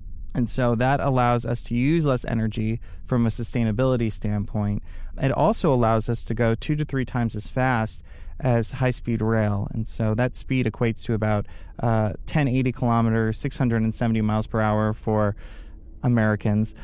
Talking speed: 155 wpm